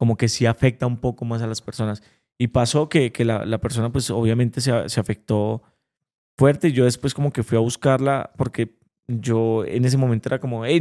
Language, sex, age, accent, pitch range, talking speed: Spanish, male, 20-39, Colombian, 115-140 Hz, 215 wpm